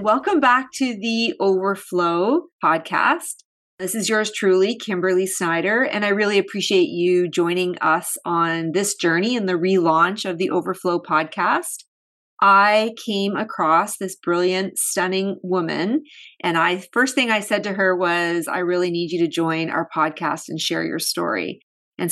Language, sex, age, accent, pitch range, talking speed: English, female, 30-49, American, 180-225 Hz, 155 wpm